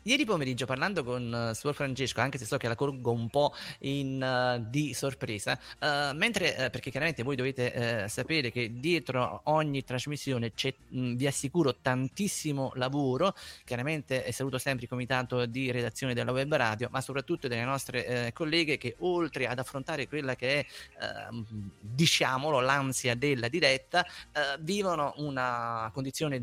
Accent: native